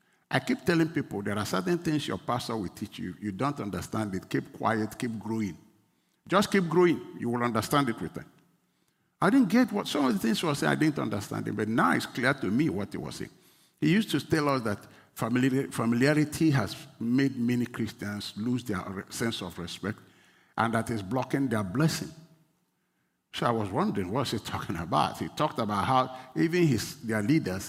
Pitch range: 105-145 Hz